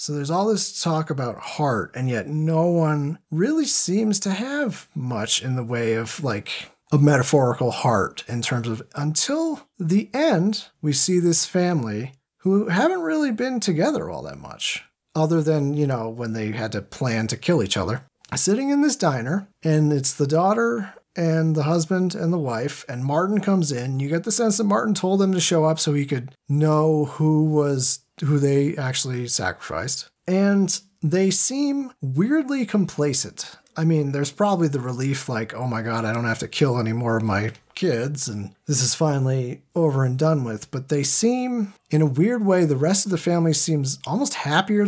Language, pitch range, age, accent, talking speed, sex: English, 130-190 Hz, 40-59, American, 190 wpm, male